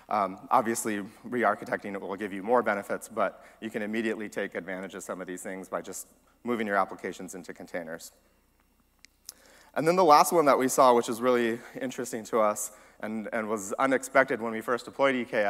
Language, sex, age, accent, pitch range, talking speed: English, male, 30-49, American, 100-120 Hz, 200 wpm